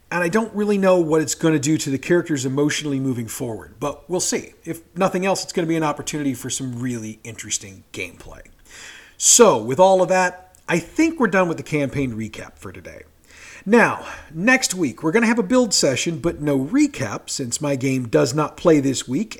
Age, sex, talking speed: 40-59, male, 205 wpm